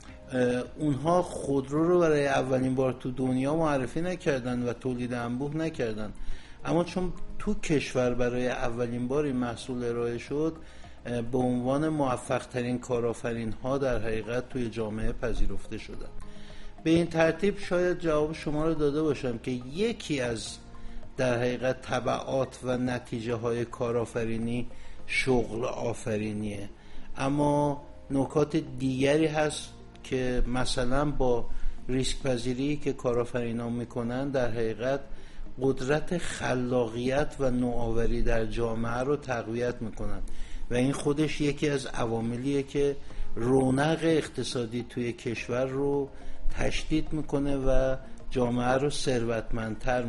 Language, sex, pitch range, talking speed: Persian, male, 120-145 Hz, 115 wpm